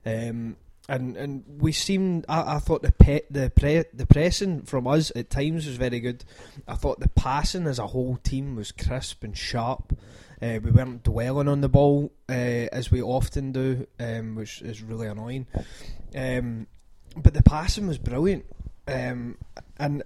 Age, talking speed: 20-39, 175 wpm